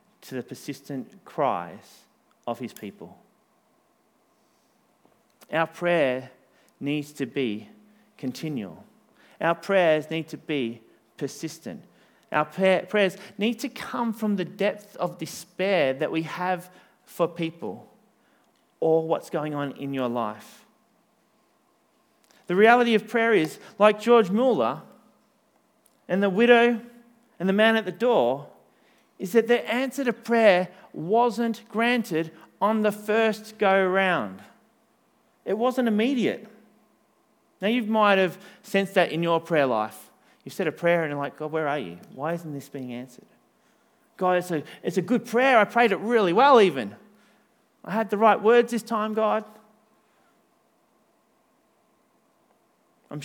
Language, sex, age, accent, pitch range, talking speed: English, male, 40-59, Australian, 155-220 Hz, 135 wpm